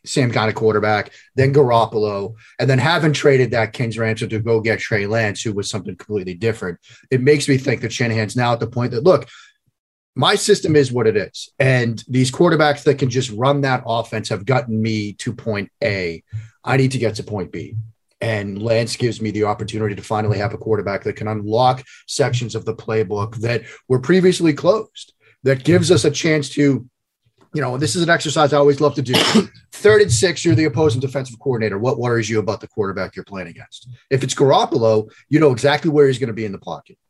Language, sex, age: English, male, 30-49